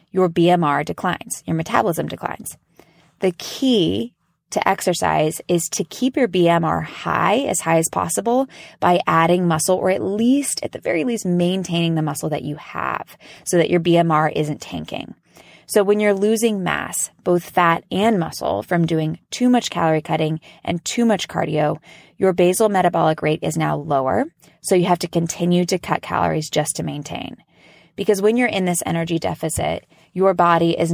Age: 20-39